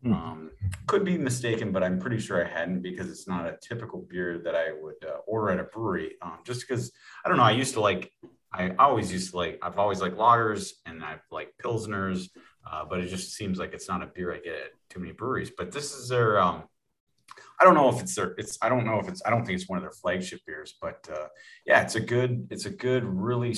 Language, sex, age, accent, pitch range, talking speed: English, male, 30-49, American, 90-115 Hz, 255 wpm